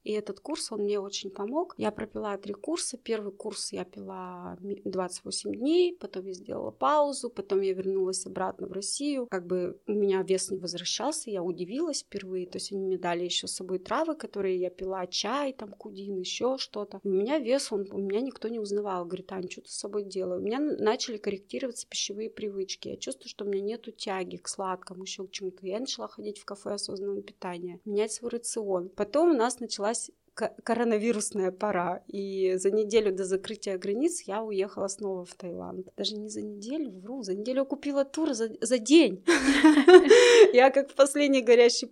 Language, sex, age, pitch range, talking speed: Russian, female, 30-49, 190-230 Hz, 190 wpm